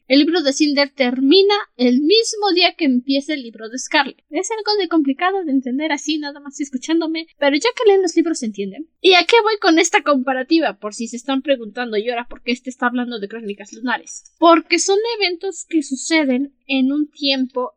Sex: female